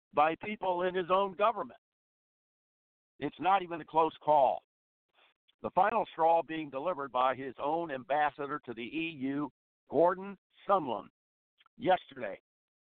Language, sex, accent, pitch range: English, male, American, 140-180 Hz